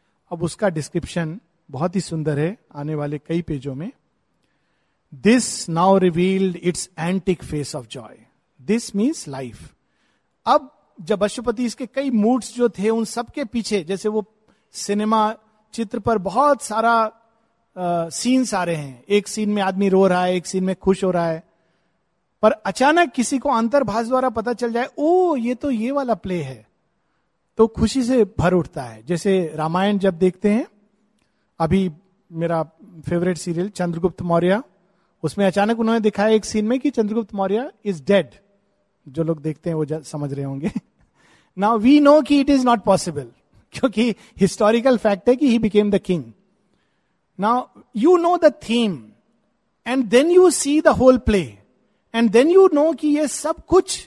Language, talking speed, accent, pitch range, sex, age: Hindi, 165 wpm, native, 175-240 Hz, male, 50-69